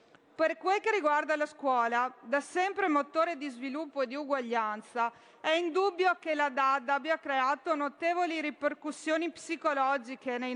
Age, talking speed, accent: 40-59, 140 wpm, native